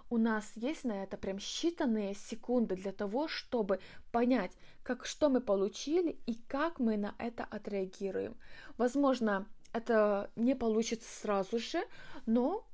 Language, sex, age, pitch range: Russian, female, 20-39, 200-245 Hz